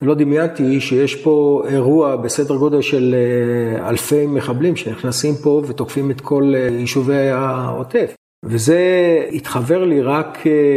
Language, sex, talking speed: Hebrew, male, 115 wpm